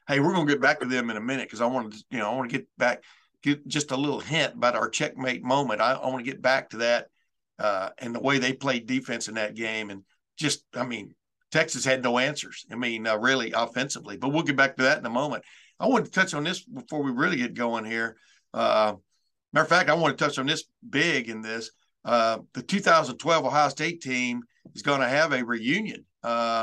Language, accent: English, American